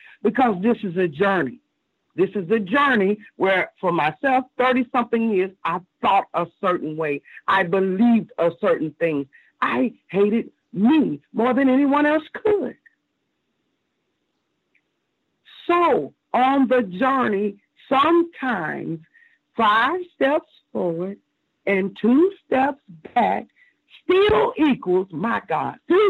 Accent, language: American, English